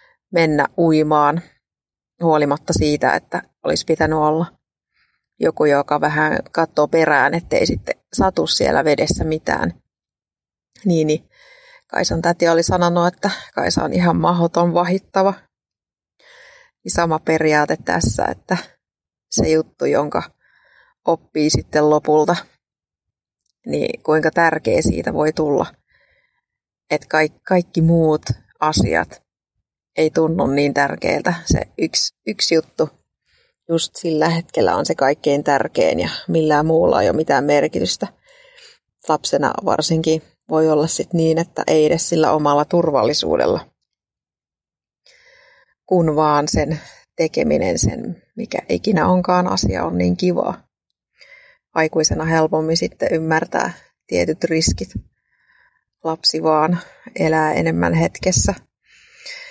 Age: 30-49